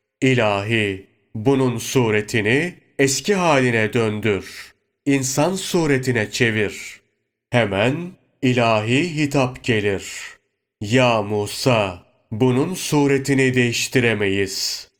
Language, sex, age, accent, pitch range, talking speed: Turkish, male, 30-49, native, 110-135 Hz, 70 wpm